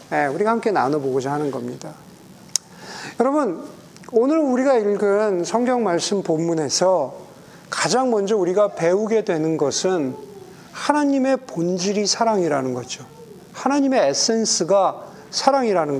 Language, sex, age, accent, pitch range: Korean, male, 40-59, native, 150-220 Hz